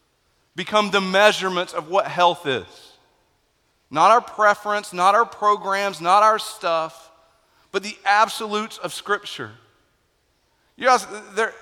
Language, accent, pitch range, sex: English, American, 195-260 Hz, male